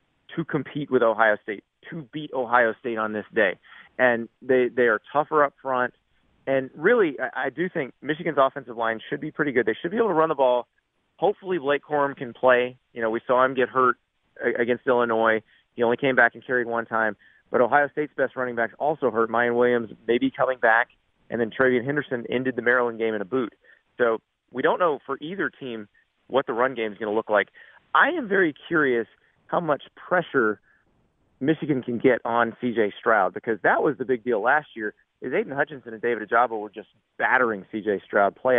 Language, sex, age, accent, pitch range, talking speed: English, male, 30-49, American, 115-140 Hz, 215 wpm